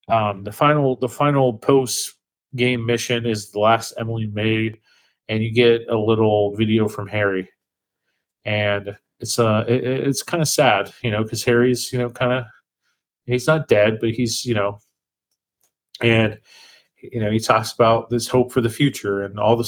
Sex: male